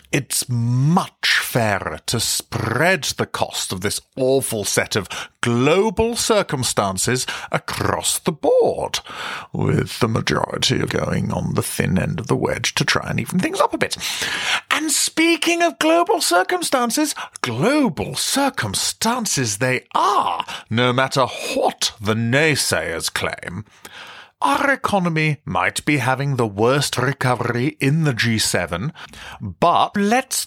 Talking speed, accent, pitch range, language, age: 125 wpm, British, 120-185 Hz, English, 40-59